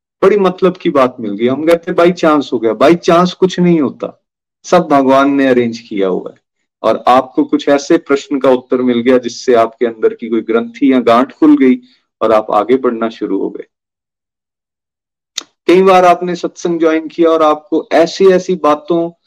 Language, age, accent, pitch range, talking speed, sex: Hindi, 40-59, native, 115-170 Hz, 190 wpm, male